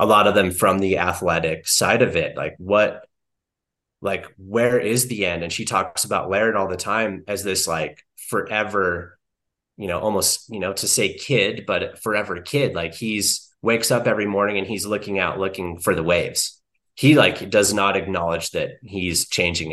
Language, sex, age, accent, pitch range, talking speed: English, male, 30-49, American, 95-120 Hz, 190 wpm